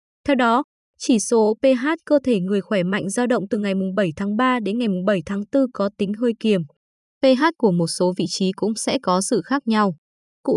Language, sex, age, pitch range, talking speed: Vietnamese, female, 20-39, 185-255 Hz, 235 wpm